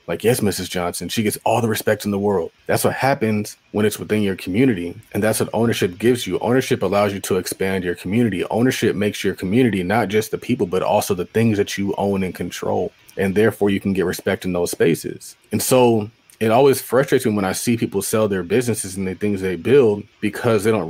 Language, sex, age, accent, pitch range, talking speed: English, male, 30-49, American, 100-125 Hz, 230 wpm